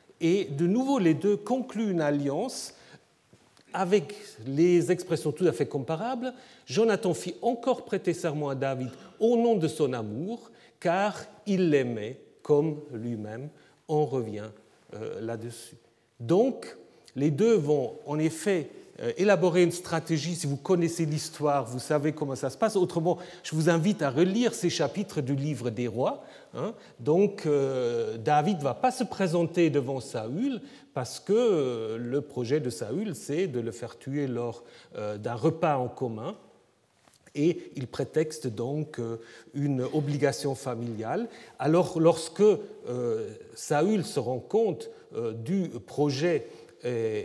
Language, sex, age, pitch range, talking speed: French, male, 40-59, 135-195 Hz, 145 wpm